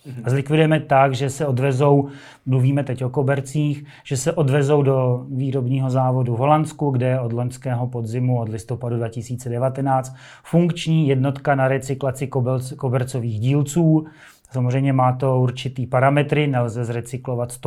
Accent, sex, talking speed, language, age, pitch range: native, male, 130 wpm, Czech, 30-49, 125-145 Hz